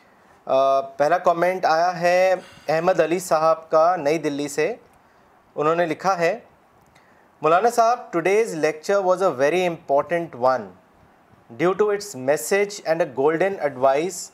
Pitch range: 155-190 Hz